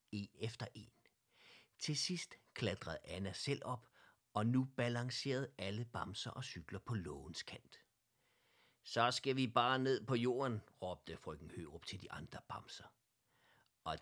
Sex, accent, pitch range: male, native, 100-130 Hz